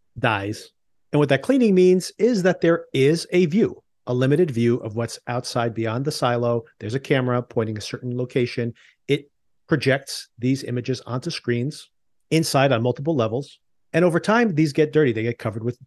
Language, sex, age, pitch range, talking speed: English, male, 40-59, 115-150 Hz, 180 wpm